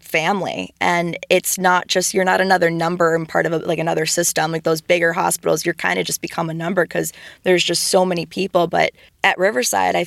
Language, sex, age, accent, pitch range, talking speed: English, female, 20-39, American, 165-185 Hz, 215 wpm